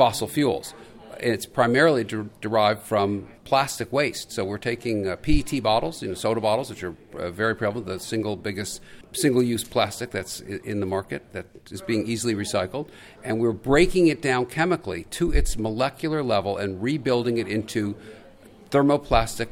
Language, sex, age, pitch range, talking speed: English, male, 50-69, 105-130 Hz, 160 wpm